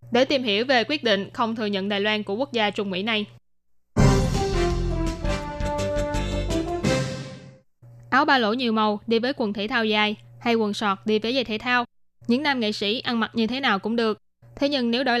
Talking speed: 200 wpm